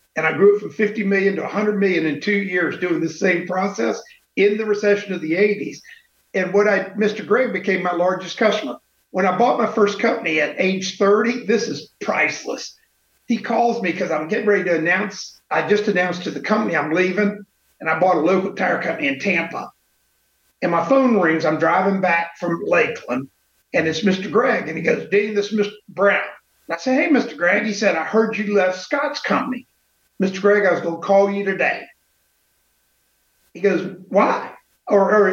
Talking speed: 200 wpm